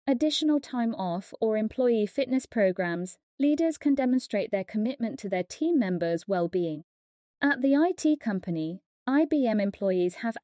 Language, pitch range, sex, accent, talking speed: English, 190-275 Hz, female, British, 140 wpm